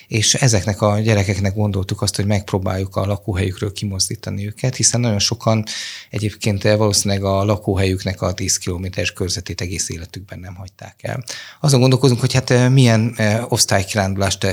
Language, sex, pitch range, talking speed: Hungarian, male, 100-115 Hz, 140 wpm